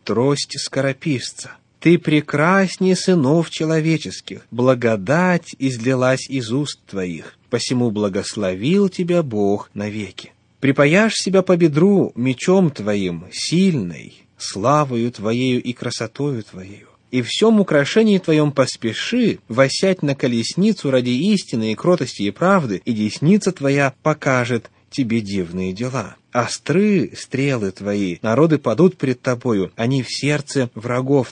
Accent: native